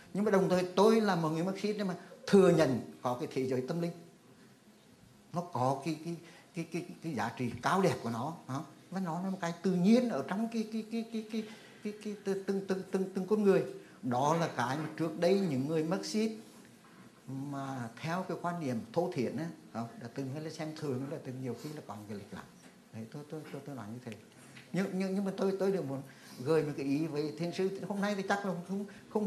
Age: 60-79